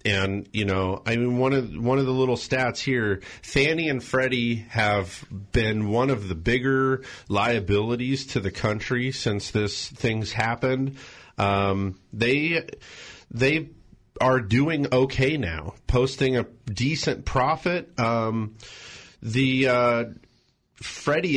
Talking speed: 125 wpm